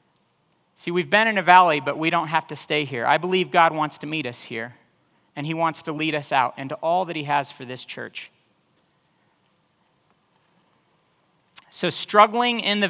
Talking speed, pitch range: 185 wpm, 145-185 Hz